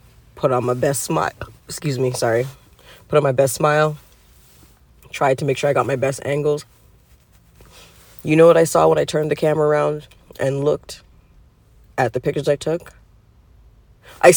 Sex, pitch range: female, 145-210 Hz